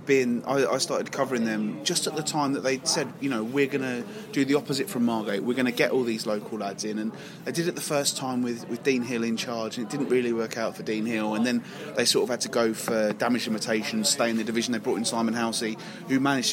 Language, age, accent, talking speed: English, 20-39, British, 270 wpm